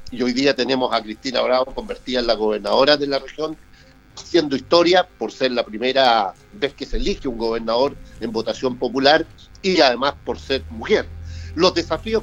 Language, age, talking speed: Spanish, 50-69, 175 wpm